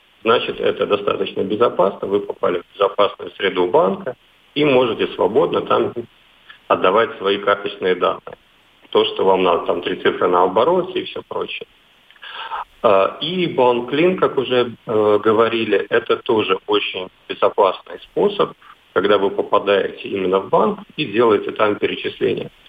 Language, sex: Russian, male